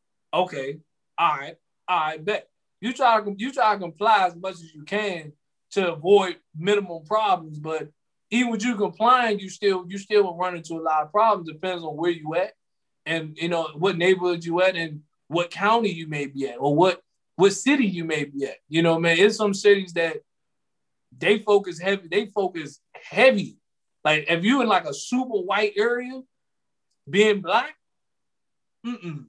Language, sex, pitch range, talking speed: English, male, 160-205 Hz, 185 wpm